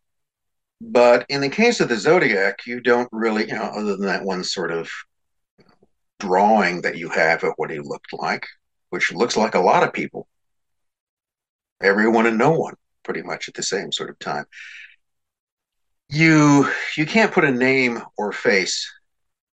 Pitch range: 100-130 Hz